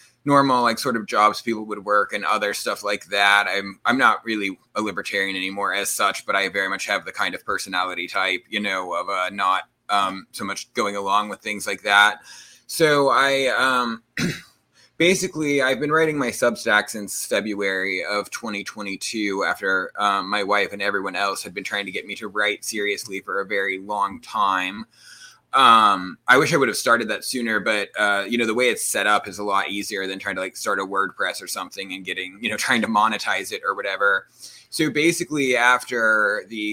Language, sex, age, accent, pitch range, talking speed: English, male, 20-39, American, 100-115 Hz, 205 wpm